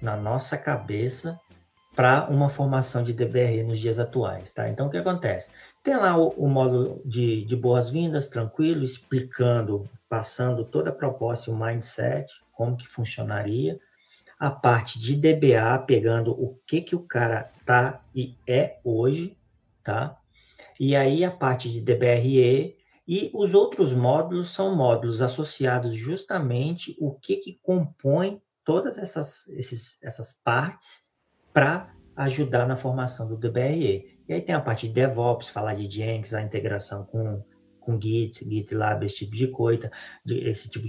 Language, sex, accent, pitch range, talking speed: English, male, Brazilian, 115-150 Hz, 150 wpm